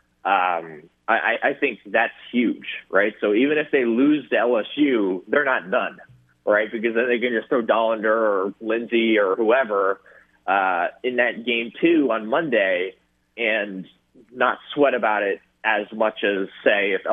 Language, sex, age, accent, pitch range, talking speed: English, male, 30-49, American, 105-145 Hz, 160 wpm